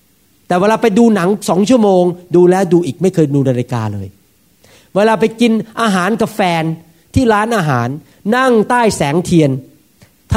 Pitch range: 165-220 Hz